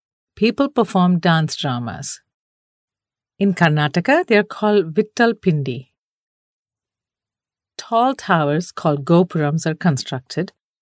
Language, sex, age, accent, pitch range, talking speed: English, female, 50-69, Indian, 155-215 Hz, 95 wpm